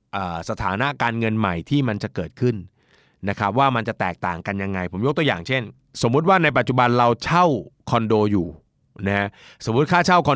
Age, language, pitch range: 30-49, Thai, 105-135 Hz